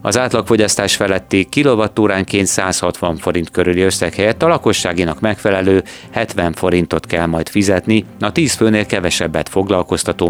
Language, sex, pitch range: Hungarian, male, 90-115 Hz